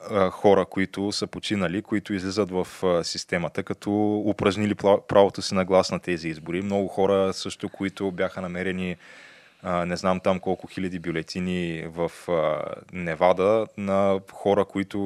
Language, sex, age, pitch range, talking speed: Bulgarian, male, 20-39, 90-110 Hz, 135 wpm